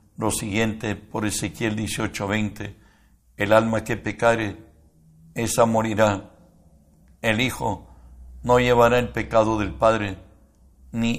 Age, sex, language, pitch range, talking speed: 60-79, male, Spanish, 100-115 Hz, 105 wpm